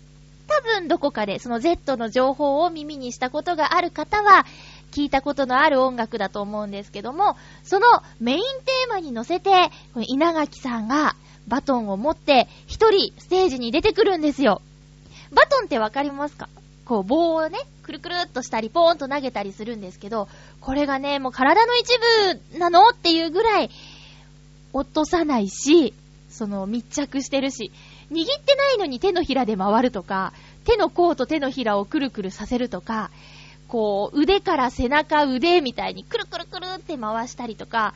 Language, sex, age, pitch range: Japanese, female, 20-39, 215-345 Hz